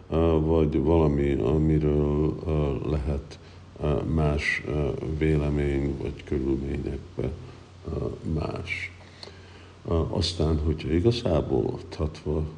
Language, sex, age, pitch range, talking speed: Hungarian, male, 50-69, 75-90 Hz, 60 wpm